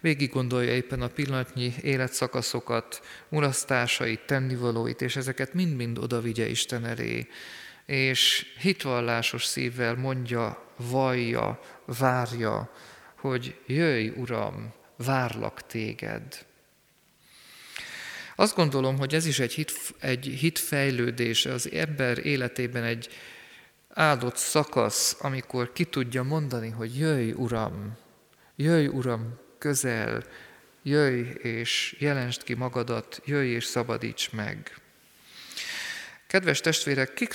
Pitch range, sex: 120-140 Hz, male